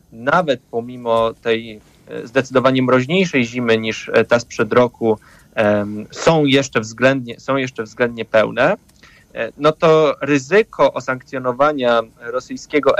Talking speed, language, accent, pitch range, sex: 100 wpm, Polish, native, 115-140 Hz, male